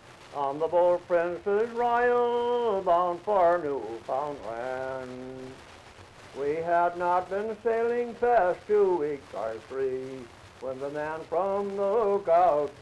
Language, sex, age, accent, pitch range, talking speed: English, male, 60-79, American, 125-210 Hz, 110 wpm